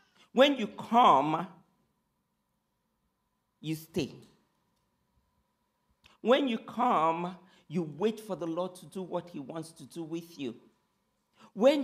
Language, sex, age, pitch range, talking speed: English, male, 50-69, 165-215 Hz, 115 wpm